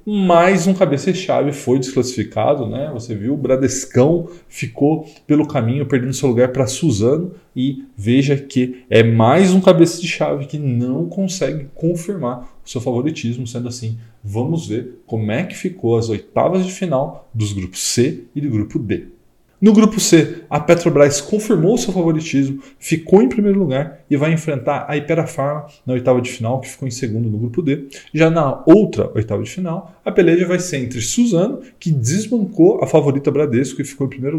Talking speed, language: 180 wpm, Portuguese